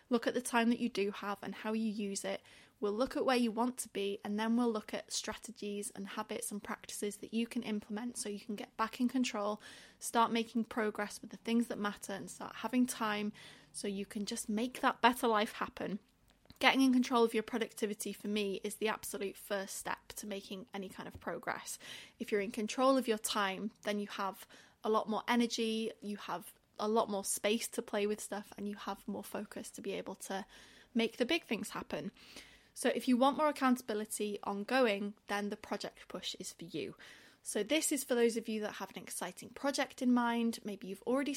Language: English